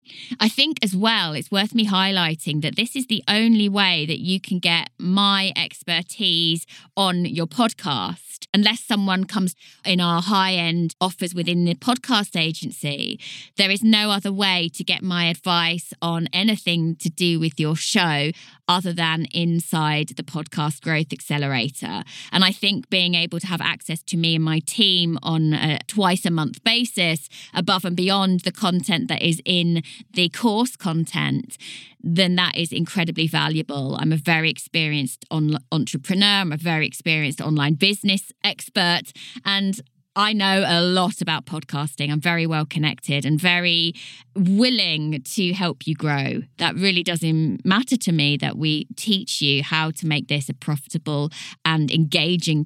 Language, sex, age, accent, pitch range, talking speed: English, female, 20-39, British, 160-195 Hz, 160 wpm